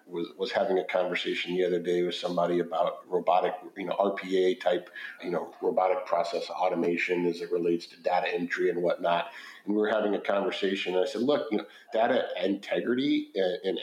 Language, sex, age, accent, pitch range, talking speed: English, male, 50-69, American, 90-120 Hz, 190 wpm